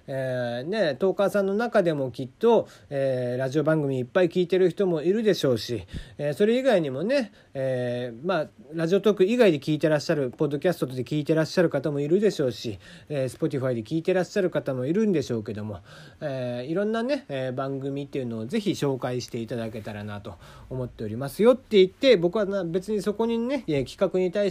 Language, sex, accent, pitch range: Japanese, male, native, 130-205 Hz